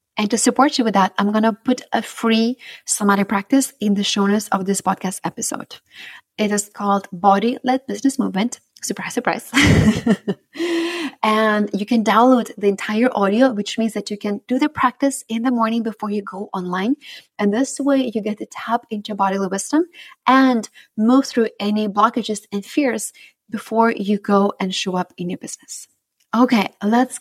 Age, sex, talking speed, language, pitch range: 20-39, female, 175 wpm, English, 200-240 Hz